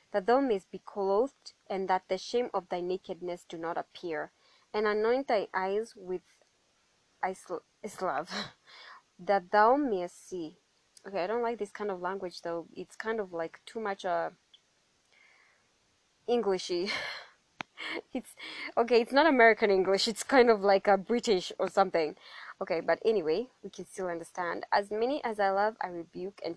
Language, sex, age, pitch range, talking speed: English, female, 20-39, 180-225 Hz, 165 wpm